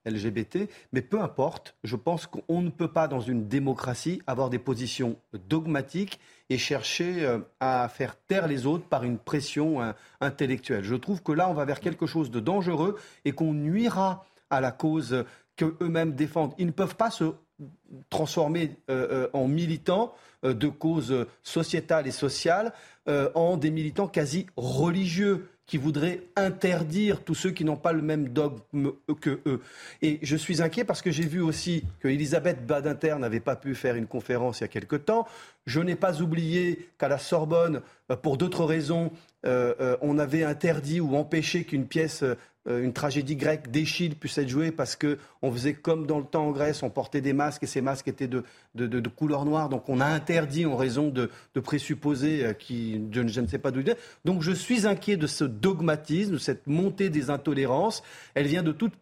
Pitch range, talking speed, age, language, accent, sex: 135-170 Hz, 185 wpm, 40-59, French, French, male